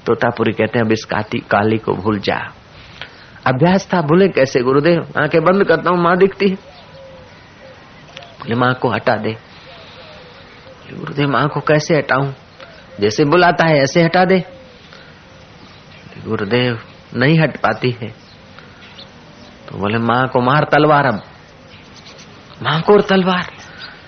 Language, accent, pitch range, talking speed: Hindi, native, 125-180 Hz, 135 wpm